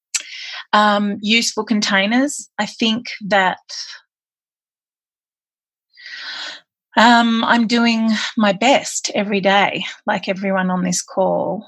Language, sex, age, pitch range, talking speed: English, female, 30-49, 180-215 Hz, 90 wpm